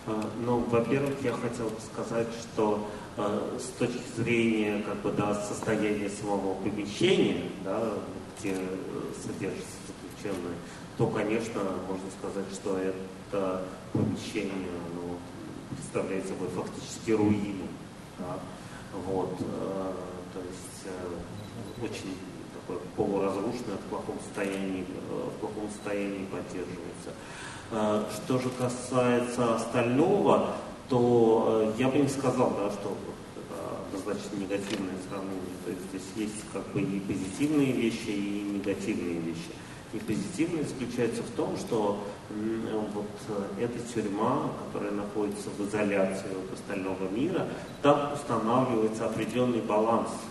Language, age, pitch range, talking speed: Russian, 30-49, 95-115 Hz, 115 wpm